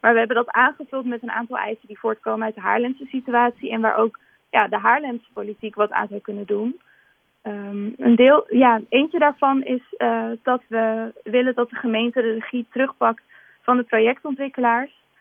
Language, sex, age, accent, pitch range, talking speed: Dutch, female, 20-39, Dutch, 220-250 Hz, 185 wpm